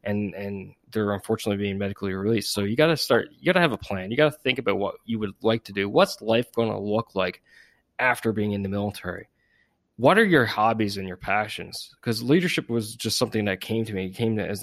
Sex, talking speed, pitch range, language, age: male, 245 wpm, 105-120 Hz, English, 20-39